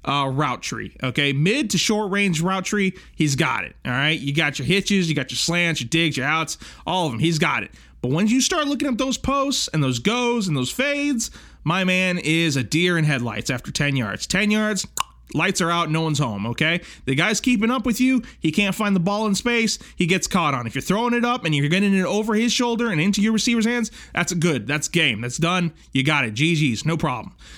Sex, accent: male, American